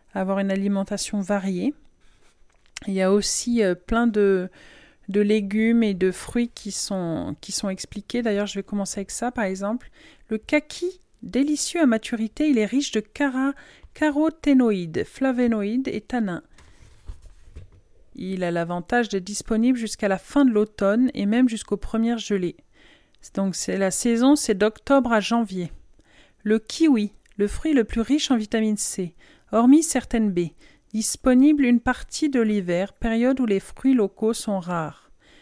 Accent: French